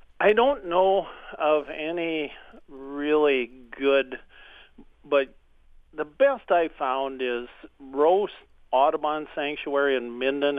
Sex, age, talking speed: male, 50-69, 100 wpm